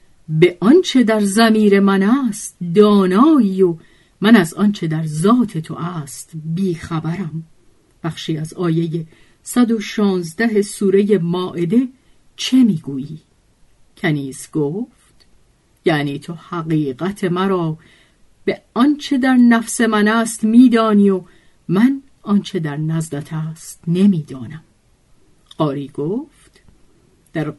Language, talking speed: Persian, 100 wpm